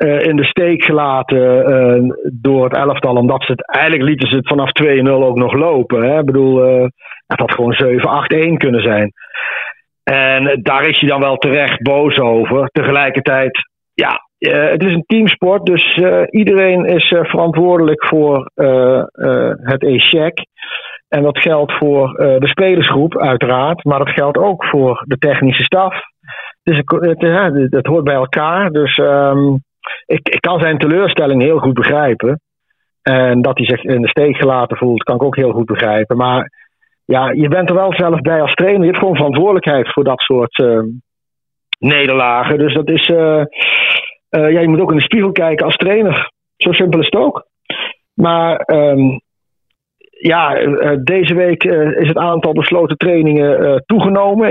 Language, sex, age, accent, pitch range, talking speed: Dutch, male, 50-69, Dutch, 130-165 Hz, 175 wpm